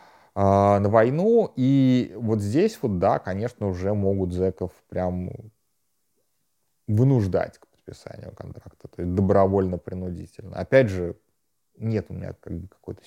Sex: male